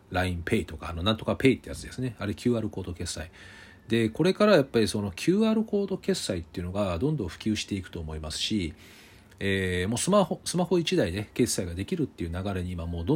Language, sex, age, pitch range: Japanese, male, 40-59, 95-145 Hz